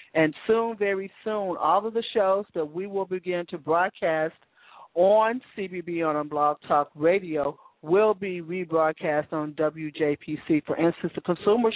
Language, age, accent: English, 50-69, American